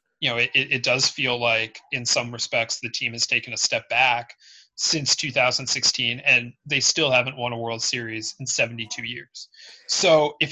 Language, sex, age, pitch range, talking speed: English, male, 30-49, 120-150 Hz, 185 wpm